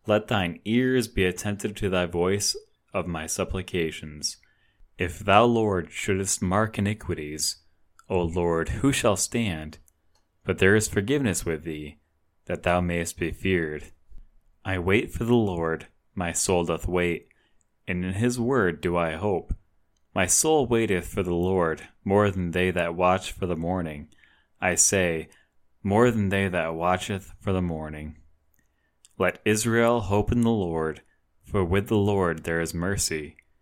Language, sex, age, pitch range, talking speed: English, male, 20-39, 80-100 Hz, 155 wpm